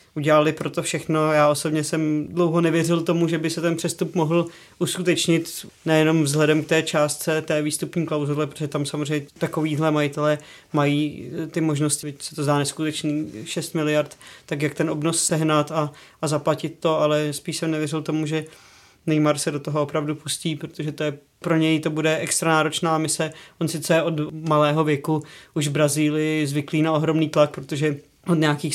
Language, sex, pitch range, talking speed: Czech, male, 150-160 Hz, 180 wpm